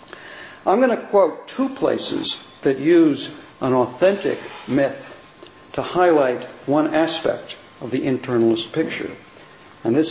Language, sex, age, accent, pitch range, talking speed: English, male, 60-79, American, 120-190 Hz, 125 wpm